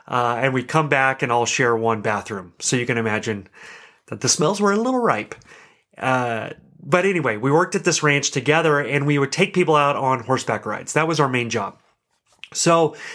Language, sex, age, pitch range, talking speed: English, male, 30-49, 130-170 Hz, 205 wpm